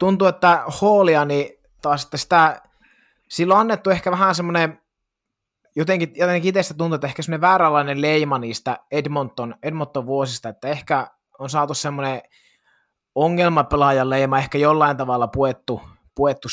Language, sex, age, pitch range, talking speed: Finnish, male, 30-49, 135-165 Hz, 140 wpm